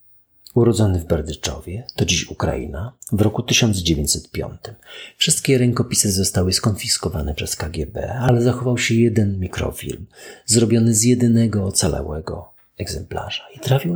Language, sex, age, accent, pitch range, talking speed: Polish, male, 40-59, native, 90-120 Hz, 115 wpm